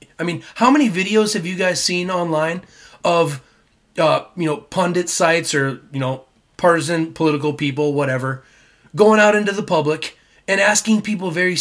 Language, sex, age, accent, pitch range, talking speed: English, male, 30-49, American, 135-180 Hz, 165 wpm